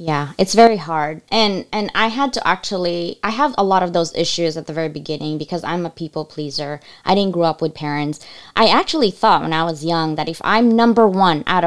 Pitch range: 160-205 Hz